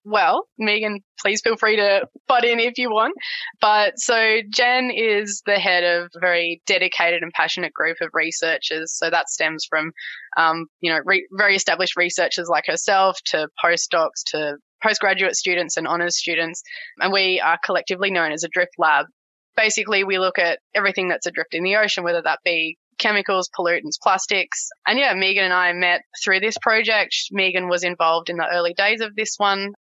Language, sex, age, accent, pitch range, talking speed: English, female, 20-39, Australian, 170-205 Hz, 185 wpm